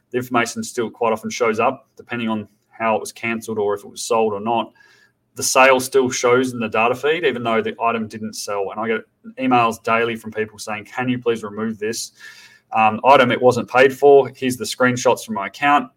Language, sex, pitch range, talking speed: English, male, 110-130 Hz, 220 wpm